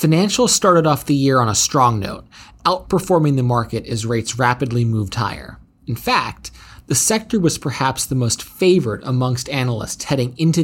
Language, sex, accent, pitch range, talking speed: English, male, American, 115-145 Hz, 170 wpm